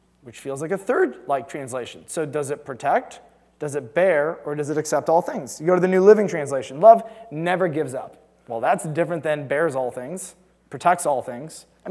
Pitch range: 145-185 Hz